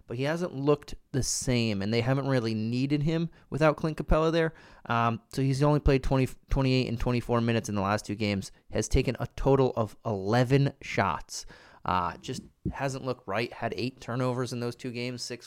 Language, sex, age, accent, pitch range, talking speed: English, male, 20-39, American, 110-130 Hz, 190 wpm